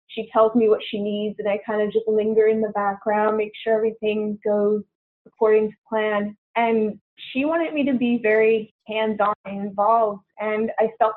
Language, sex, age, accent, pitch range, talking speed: English, female, 20-39, American, 205-225 Hz, 185 wpm